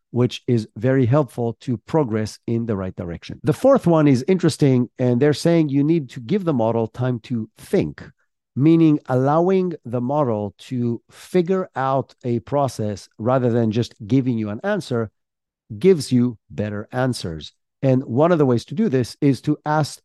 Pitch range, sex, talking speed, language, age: 115-145 Hz, male, 175 wpm, English, 50-69